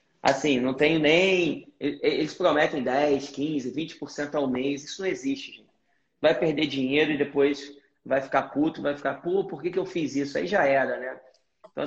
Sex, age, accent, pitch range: male, 20-39, Brazilian, 140-165 Hz